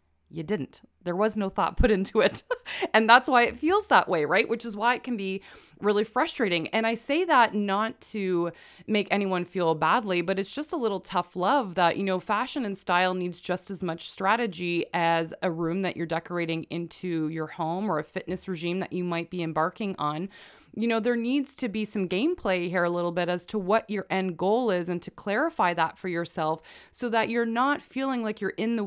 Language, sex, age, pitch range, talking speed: English, female, 20-39, 170-215 Hz, 220 wpm